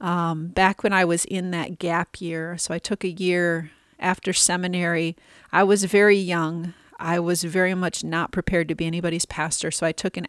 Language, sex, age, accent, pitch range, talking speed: English, female, 30-49, American, 165-195 Hz, 200 wpm